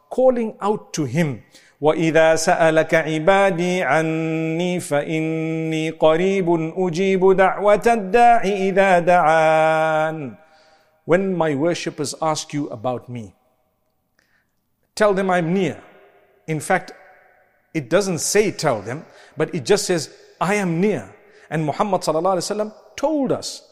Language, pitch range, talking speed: English, 155-205 Hz, 85 wpm